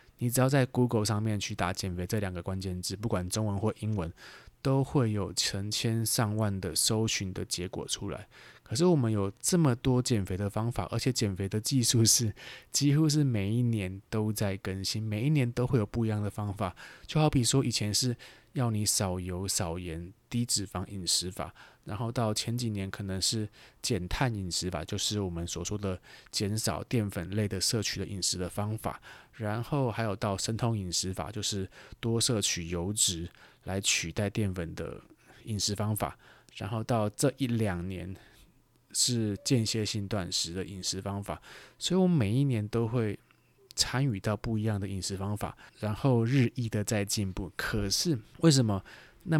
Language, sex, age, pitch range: Chinese, male, 20-39, 95-120 Hz